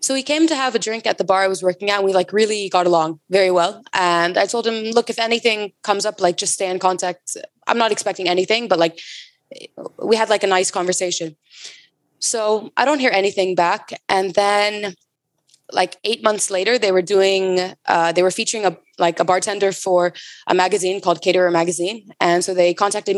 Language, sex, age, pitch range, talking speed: English, female, 20-39, 175-215 Hz, 205 wpm